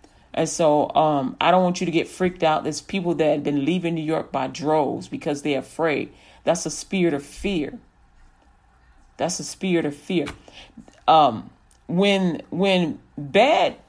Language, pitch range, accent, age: English, 155-195 Hz, American, 40-59